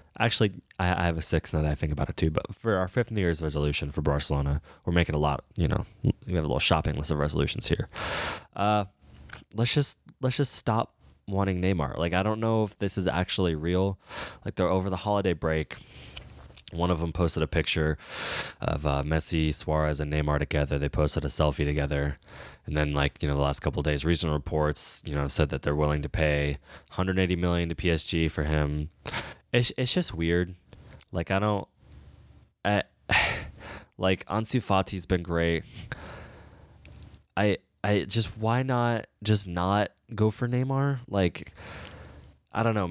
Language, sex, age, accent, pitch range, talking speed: English, male, 20-39, American, 75-95 Hz, 180 wpm